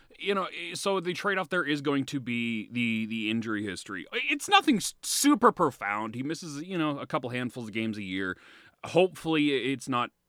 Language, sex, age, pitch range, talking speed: English, male, 30-49, 110-170 Hz, 190 wpm